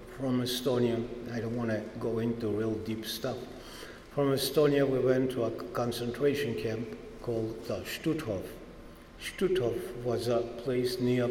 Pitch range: 110-125 Hz